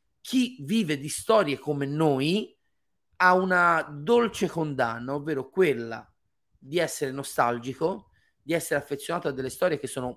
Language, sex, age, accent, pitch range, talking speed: Italian, male, 30-49, native, 135-185 Hz, 135 wpm